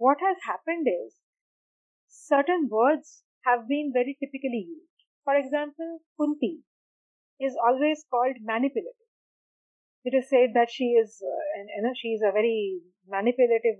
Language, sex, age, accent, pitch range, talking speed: Hindi, female, 30-49, native, 220-310 Hz, 145 wpm